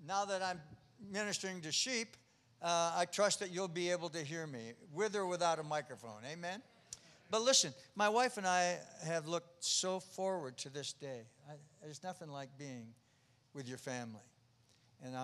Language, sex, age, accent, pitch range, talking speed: English, male, 60-79, American, 130-175 Hz, 170 wpm